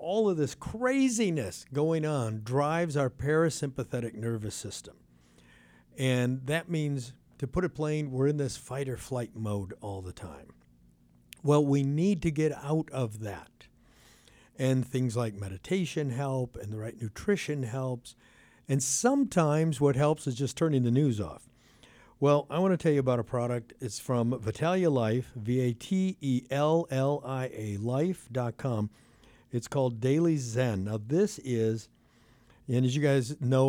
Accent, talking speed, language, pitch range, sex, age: American, 145 wpm, English, 115-145 Hz, male, 60-79